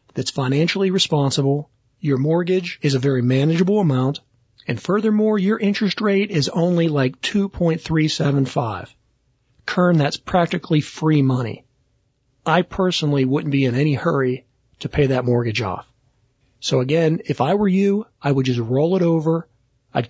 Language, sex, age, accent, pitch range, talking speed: English, male, 40-59, American, 125-160 Hz, 145 wpm